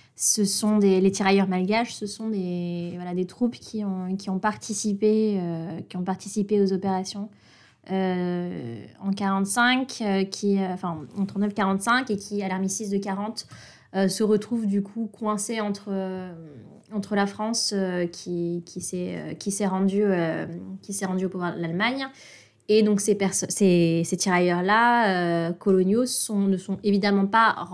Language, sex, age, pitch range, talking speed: French, female, 20-39, 185-220 Hz, 165 wpm